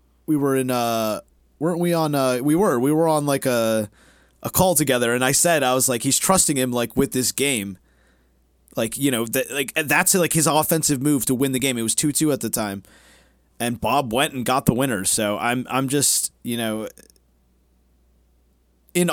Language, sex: English, male